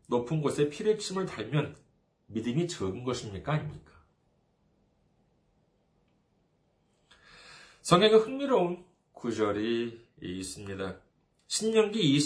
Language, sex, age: Korean, male, 40-59